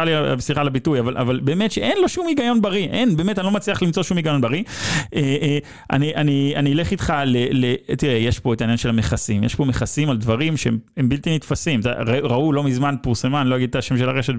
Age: 30-49